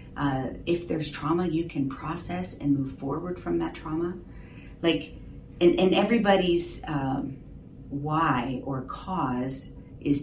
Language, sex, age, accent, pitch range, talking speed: English, female, 40-59, American, 135-160 Hz, 130 wpm